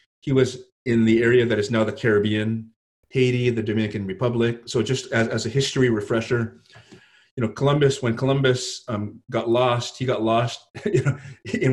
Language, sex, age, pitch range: English, male, 30-49, 115-135 Hz